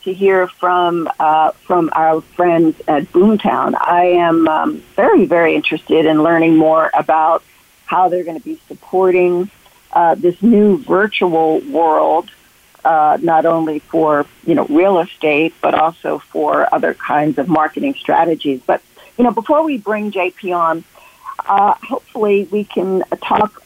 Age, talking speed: 50-69, 150 wpm